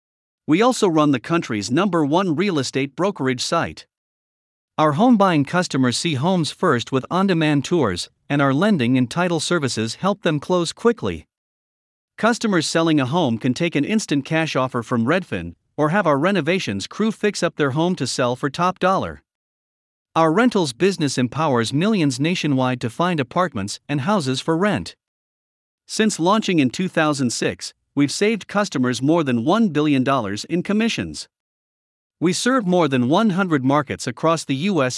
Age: 50-69